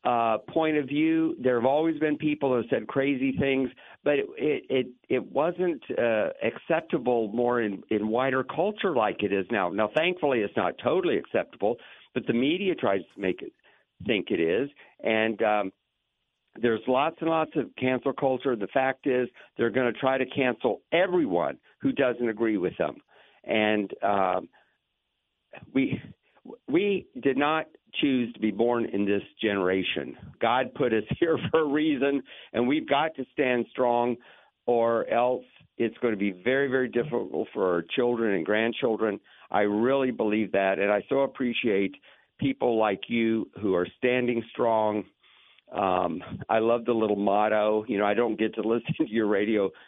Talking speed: 170 wpm